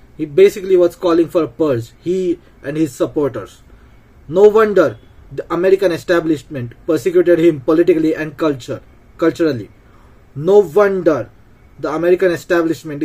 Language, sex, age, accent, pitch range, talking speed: English, male, 20-39, Indian, 130-180 Hz, 125 wpm